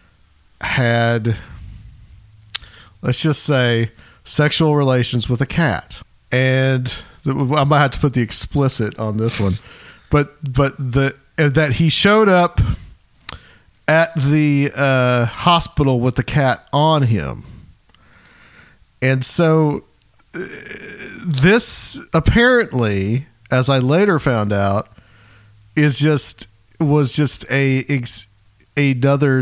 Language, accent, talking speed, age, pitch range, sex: English, American, 110 wpm, 50-69, 115-155 Hz, male